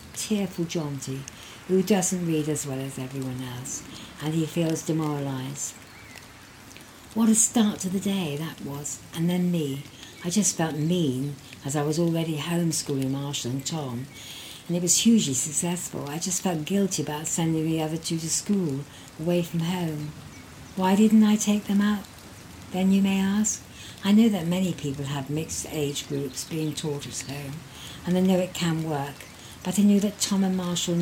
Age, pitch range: 60-79, 140-180 Hz